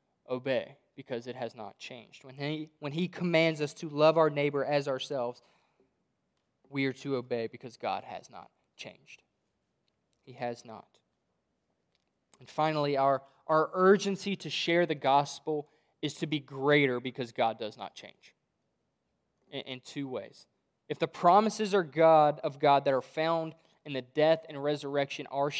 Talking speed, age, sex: 160 wpm, 20-39, male